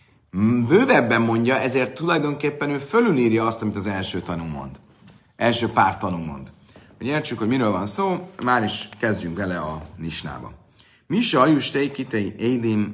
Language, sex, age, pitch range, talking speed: Hungarian, male, 40-59, 95-130 Hz, 145 wpm